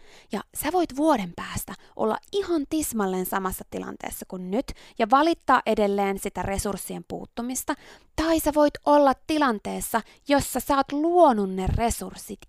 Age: 20-39